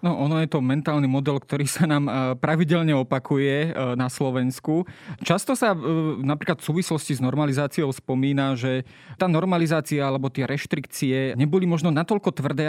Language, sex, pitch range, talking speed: Slovak, male, 135-160 Hz, 145 wpm